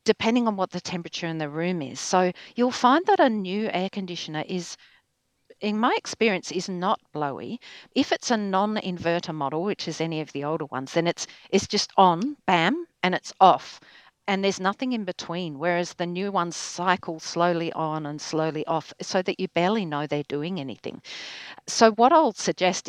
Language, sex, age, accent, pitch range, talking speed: English, female, 50-69, Australian, 160-220 Hz, 190 wpm